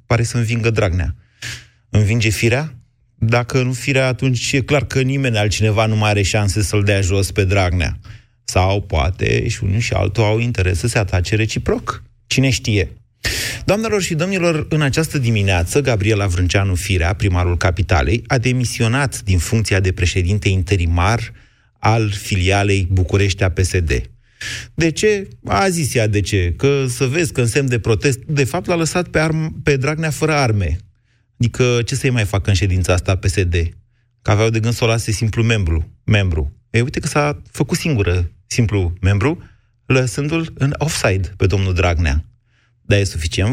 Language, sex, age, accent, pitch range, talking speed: Romanian, male, 30-49, native, 100-135 Hz, 165 wpm